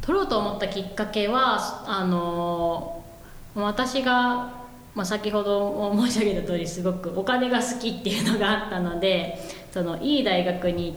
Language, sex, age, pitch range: Japanese, female, 20-39, 170-225 Hz